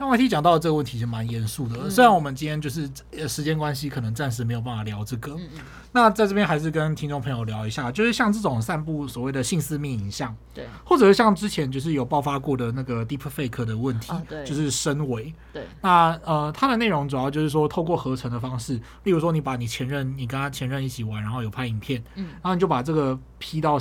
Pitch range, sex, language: 120-155 Hz, male, Chinese